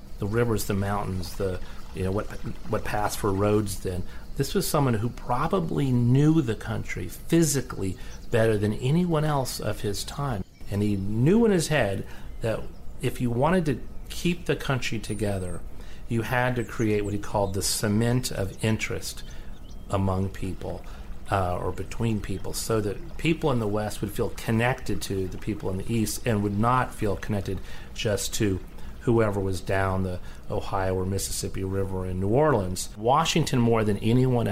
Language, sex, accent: English, male, American